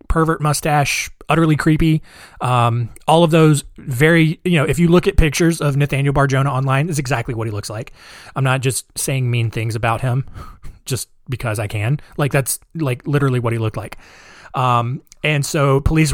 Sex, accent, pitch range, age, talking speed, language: male, American, 120-155 Hz, 20-39, 185 wpm, English